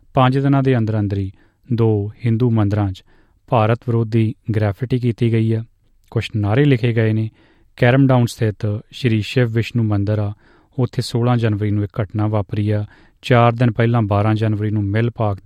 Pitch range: 105-120 Hz